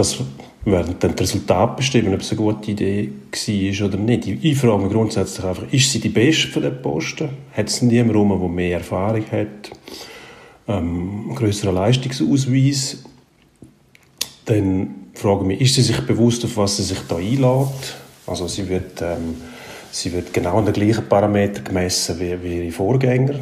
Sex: male